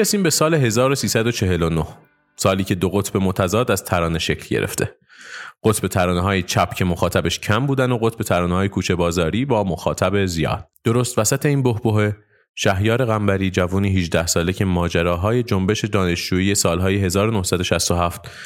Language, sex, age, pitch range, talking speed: Persian, male, 30-49, 90-110 Hz, 145 wpm